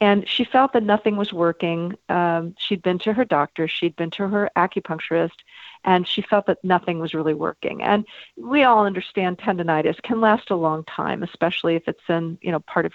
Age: 50-69